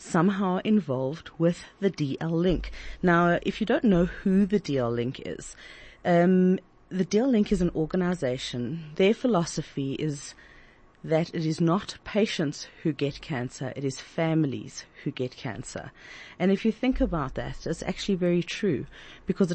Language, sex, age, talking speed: English, female, 40-59, 145 wpm